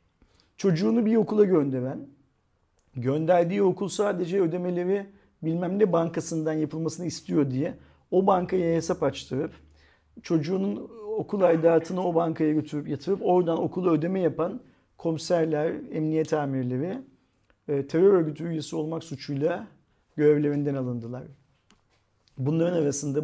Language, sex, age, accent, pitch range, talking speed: Turkish, male, 50-69, native, 140-170 Hz, 105 wpm